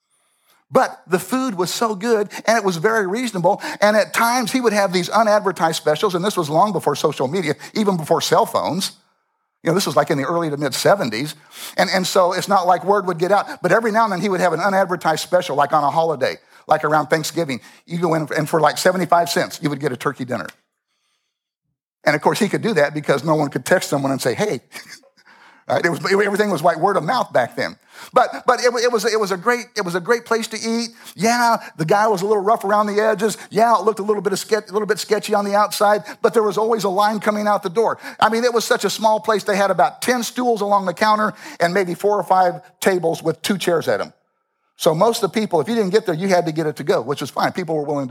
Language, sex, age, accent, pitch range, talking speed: English, male, 50-69, American, 170-220 Hz, 260 wpm